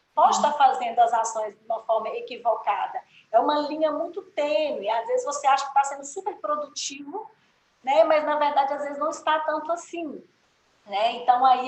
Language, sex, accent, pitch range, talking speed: Portuguese, female, Brazilian, 245-320 Hz, 185 wpm